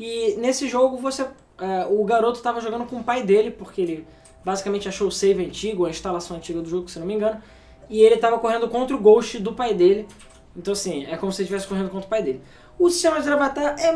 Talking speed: 240 wpm